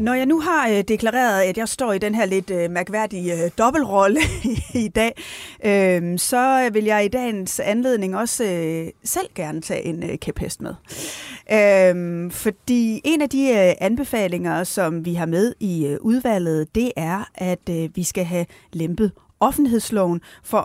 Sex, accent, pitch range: female, native, 170-220 Hz